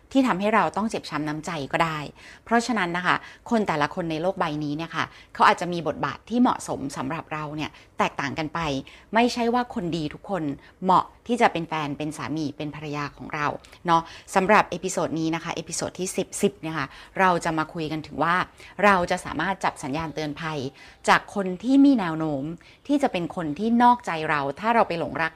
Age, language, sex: 20-39, Thai, female